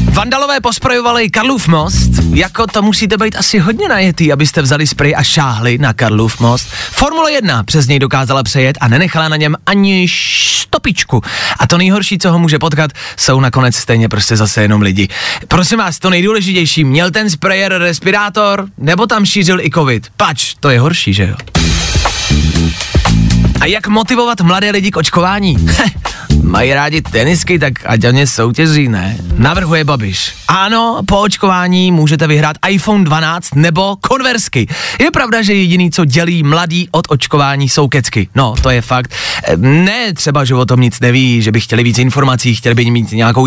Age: 30-49